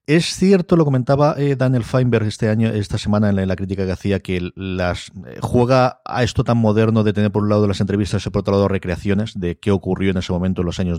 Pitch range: 95-115 Hz